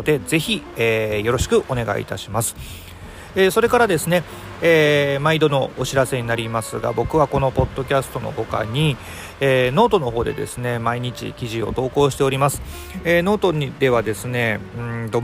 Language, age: Japanese, 40-59